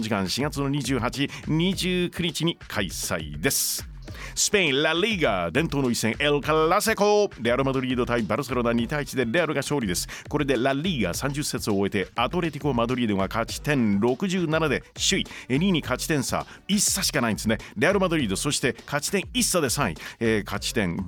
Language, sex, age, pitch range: Japanese, male, 40-59, 115-165 Hz